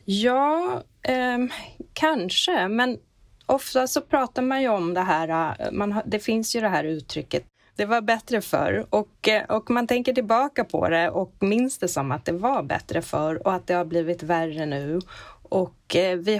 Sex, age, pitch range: female, 30-49, 160-215 Hz